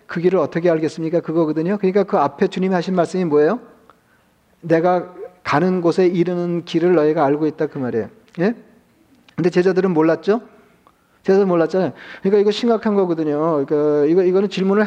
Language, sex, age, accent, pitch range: Korean, male, 40-59, native, 160-190 Hz